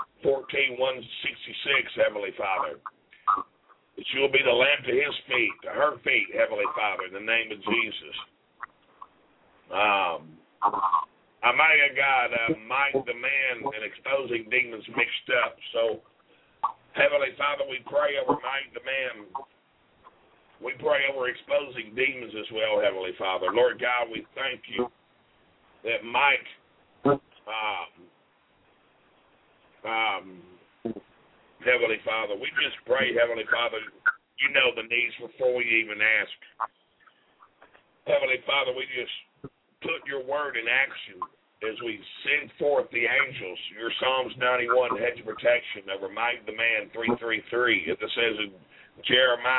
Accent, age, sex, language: American, 50-69, male, English